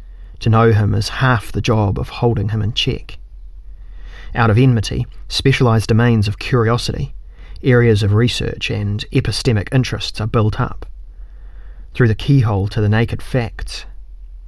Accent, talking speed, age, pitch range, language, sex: Australian, 145 wpm, 30-49, 85-120 Hz, English, male